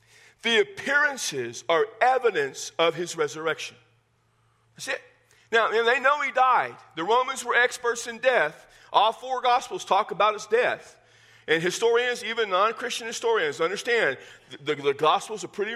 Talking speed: 150 wpm